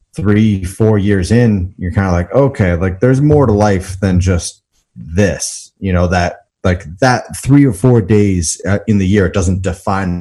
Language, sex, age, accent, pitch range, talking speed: English, male, 30-49, American, 90-110 Hz, 190 wpm